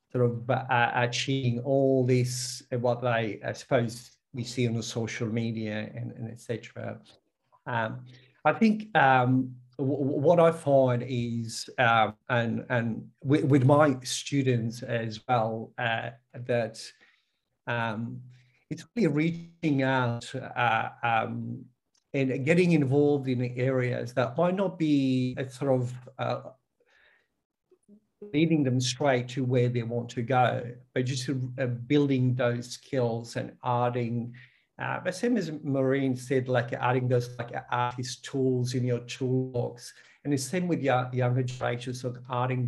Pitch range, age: 120-135 Hz, 50-69